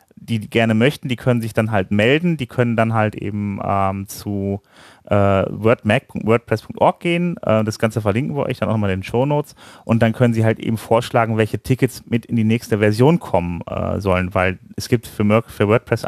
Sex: male